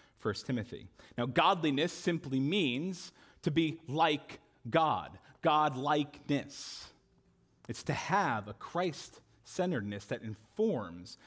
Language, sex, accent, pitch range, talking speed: English, male, American, 120-175 Hz, 100 wpm